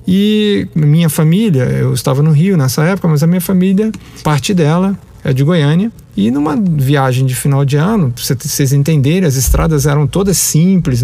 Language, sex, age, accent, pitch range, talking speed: Portuguese, male, 40-59, Brazilian, 135-190 Hz, 180 wpm